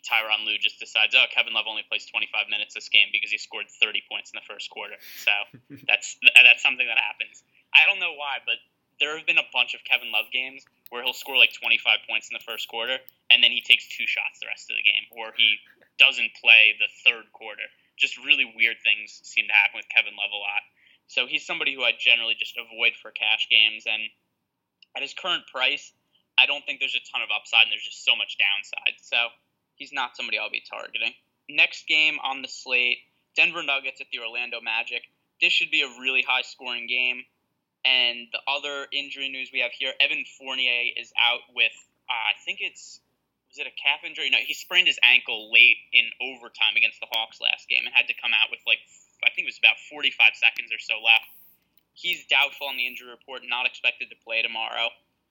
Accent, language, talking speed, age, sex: American, English, 220 wpm, 20-39, male